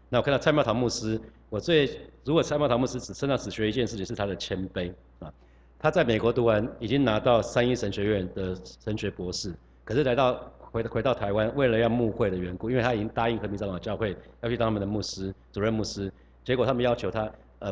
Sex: male